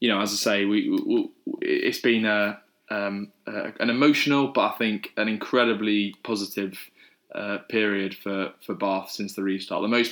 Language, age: English, 20-39